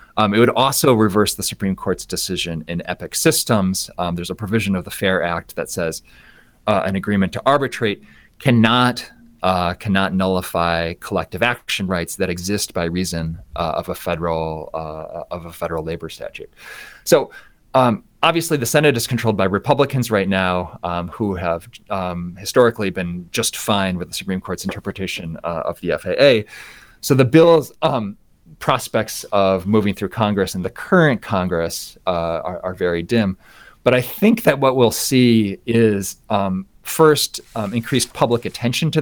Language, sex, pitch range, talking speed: English, male, 90-120 Hz, 170 wpm